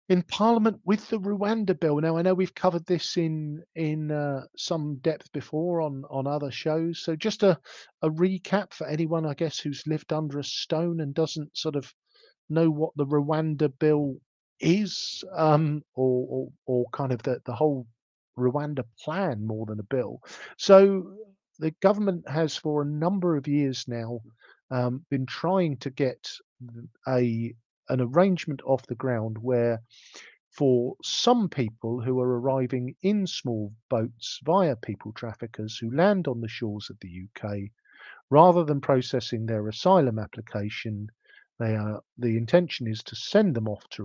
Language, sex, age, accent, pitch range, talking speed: English, male, 50-69, British, 125-170 Hz, 160 wpm